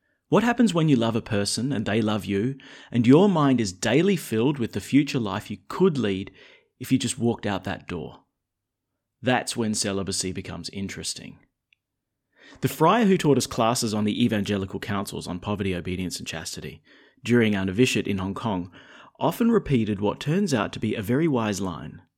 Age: 30-49